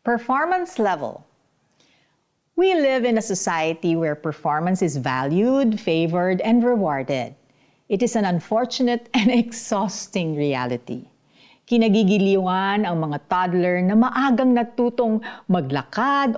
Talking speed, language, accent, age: 105 wpm, Filipino, native, 50-69